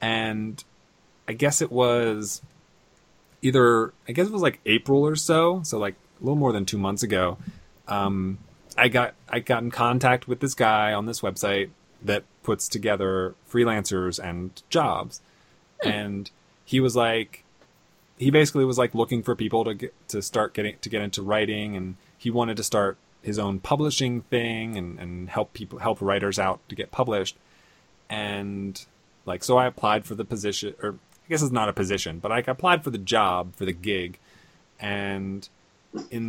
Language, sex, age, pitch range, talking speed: English, male, 20-39, 100-125 Hz, 175 wpm